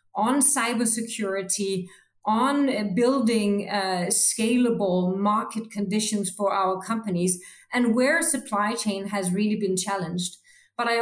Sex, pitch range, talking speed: female, 190-235 Hz, 115 wpm